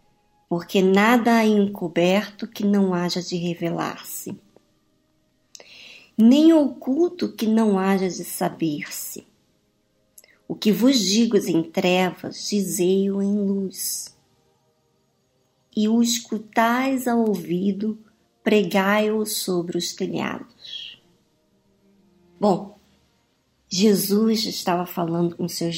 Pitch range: 180-230 Hz